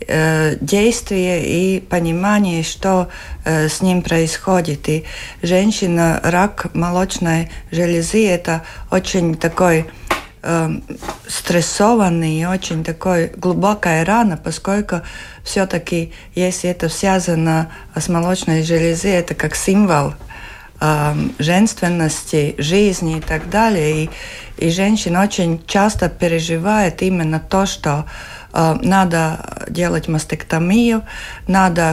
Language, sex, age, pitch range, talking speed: Russian, female, 50-69, 160-185 Hz, 100 wpm